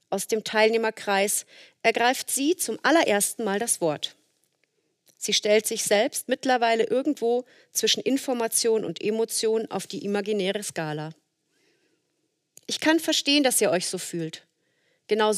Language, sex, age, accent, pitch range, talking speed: German, female, 40-59, German, 180-235 Hz, 130 wpm